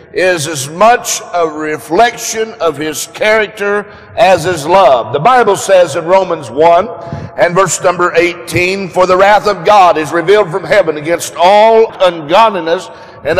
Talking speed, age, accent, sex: 150 wpm, 60-79, American, male